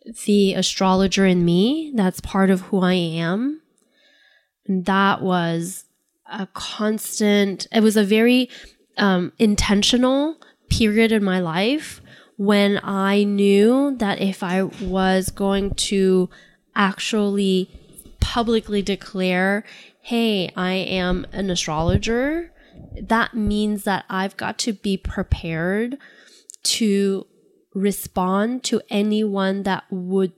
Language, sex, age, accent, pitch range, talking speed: English, female, 10-29, American, 185-215 Hz, 110 wpm